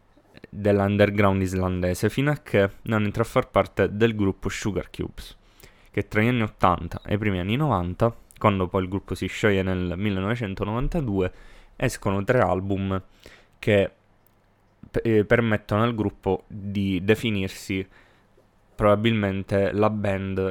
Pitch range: 95-105 Hz